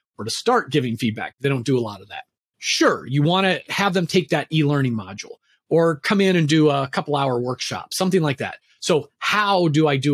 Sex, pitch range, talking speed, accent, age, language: male, 145-210 Hz, 230 wpm, American, 30-49, English